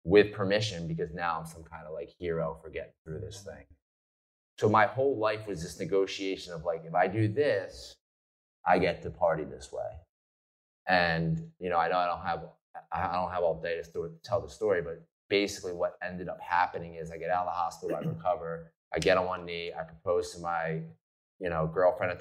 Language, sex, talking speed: English, male, 220 wpm